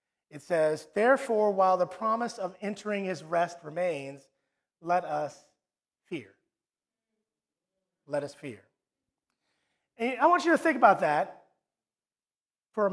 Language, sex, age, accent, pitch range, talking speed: English, male, 30-49, American, 185-250 Hz, 120 wpm